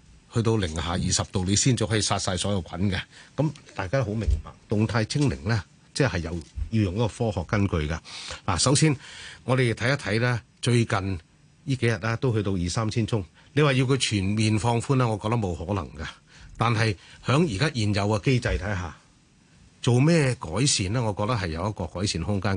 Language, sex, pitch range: Chinese, male, 95-120 Hz